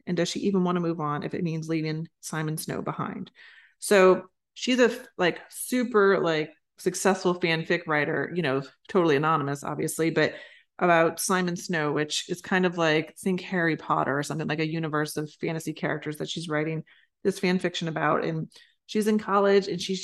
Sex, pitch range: female, 160-185 Hz